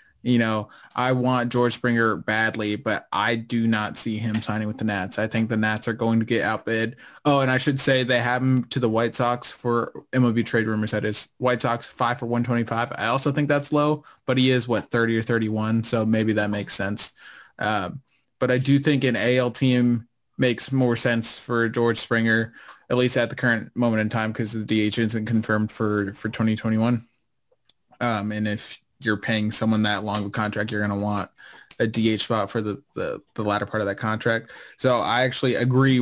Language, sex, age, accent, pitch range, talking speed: English, male, 20-39, American, 110-120 Hz, 210 wpm